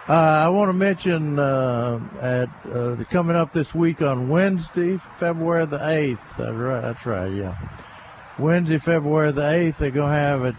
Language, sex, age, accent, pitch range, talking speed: English, male, 60-79, American, 125-155 Hz, 170 wpm